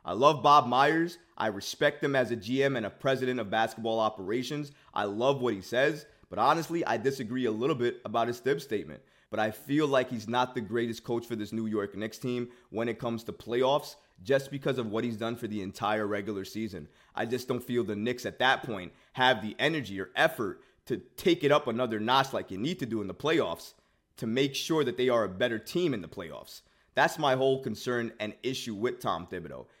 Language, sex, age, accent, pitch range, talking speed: English, male, 20-39, American, 110-140 Hz, 225 wpm